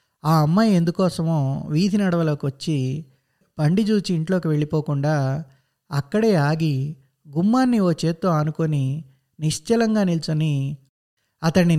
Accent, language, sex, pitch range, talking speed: native, Telugu, male, 145-195 Hz, 95 wpm